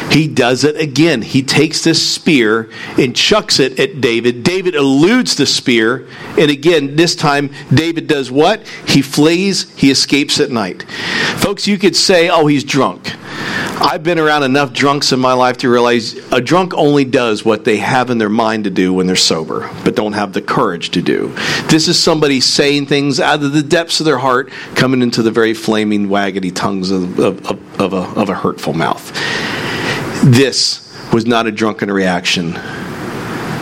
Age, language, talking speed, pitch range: 50-69, English, 180 wpm, 110-155 Hz